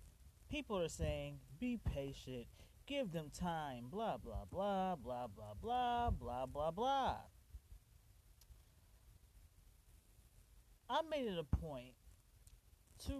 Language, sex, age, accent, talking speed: English, male, 30-49, American, 105 wpm